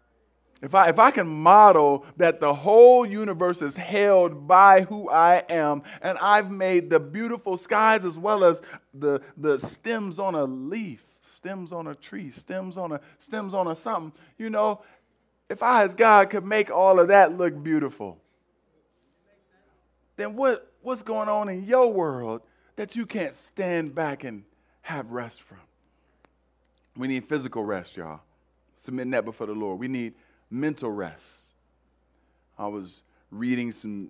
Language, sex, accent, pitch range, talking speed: English, male, American, 110-180 Hz, 160 wpm